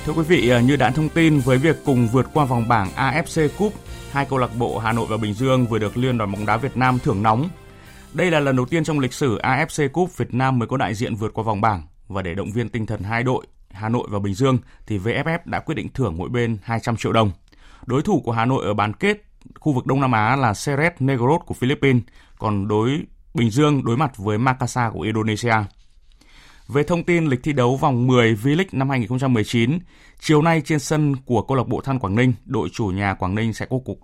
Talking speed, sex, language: 245 wpm, male, Vietnamese